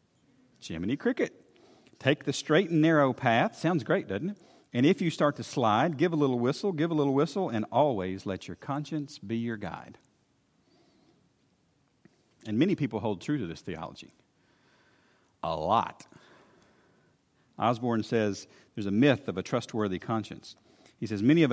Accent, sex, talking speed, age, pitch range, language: American, male, 160 wpm, 50-69, 100-140 Hz, English